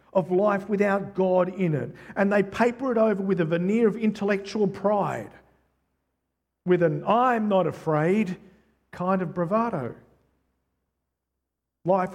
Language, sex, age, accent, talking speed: English, male, 50-69, Australian, 130 wpm